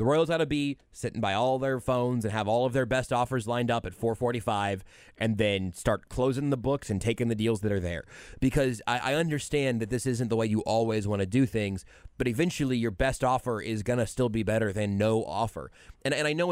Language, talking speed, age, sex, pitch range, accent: English, 245 wpm, 20-39, male, 110-140 Hz, American